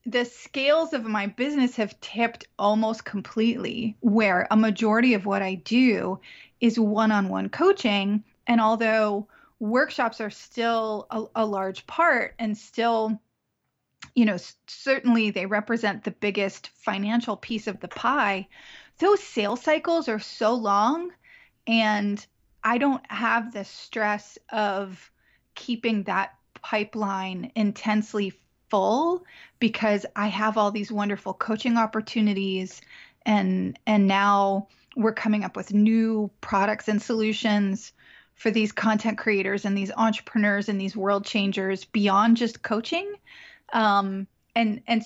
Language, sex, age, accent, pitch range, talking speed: English, female, 30-49, American, 200-230 Hz, 130 wpm